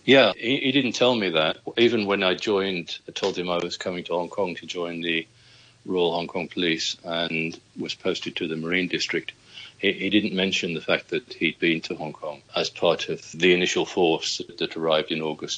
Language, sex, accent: English, male, British